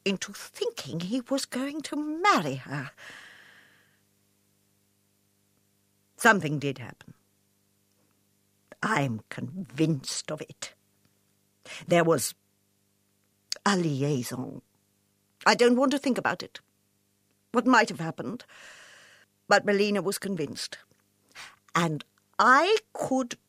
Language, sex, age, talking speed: English, female, 60-79, 95 wpm